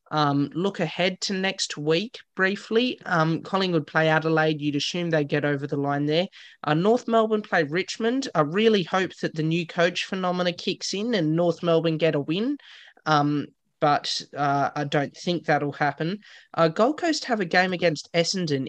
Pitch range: 145-180 Hz